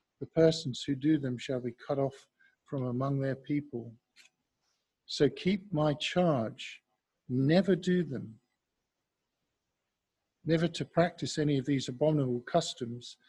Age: 50-69